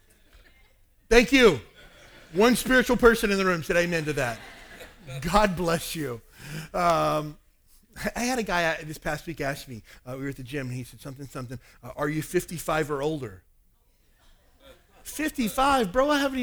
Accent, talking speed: American, 170 wpm